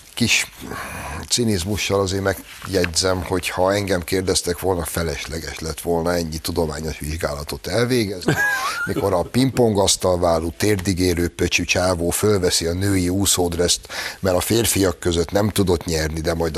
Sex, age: male, 60-79